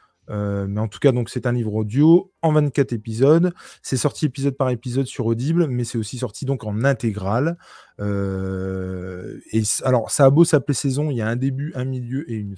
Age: 20-39